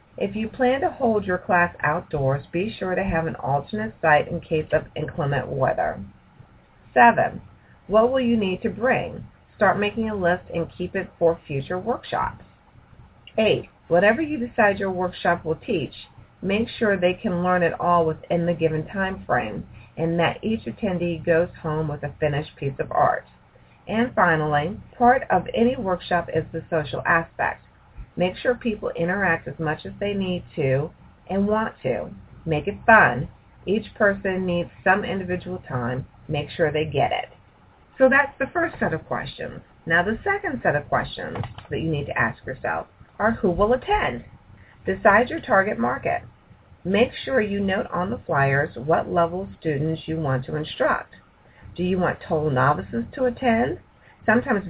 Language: English